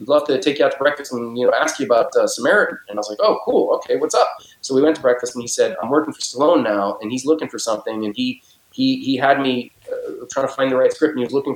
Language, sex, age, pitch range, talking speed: English, male, 30-49, 125-170 Hz, 310 wpm